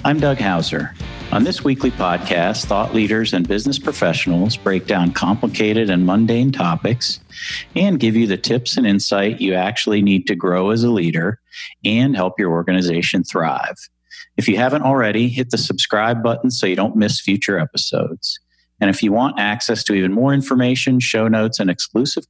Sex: male